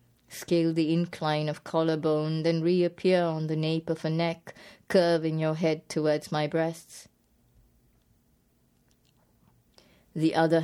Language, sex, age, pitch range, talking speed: English, female, 20-39, 150-165 Hz, 120 wpm